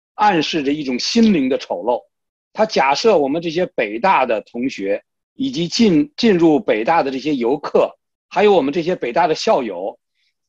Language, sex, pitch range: Chinese, male, 140-210 Hz